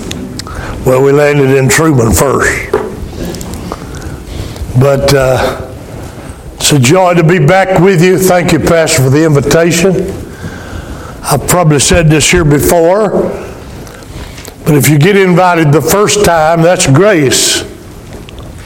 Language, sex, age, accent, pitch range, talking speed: English, male, 60-79, American, 135-170 Hz, 120 wpm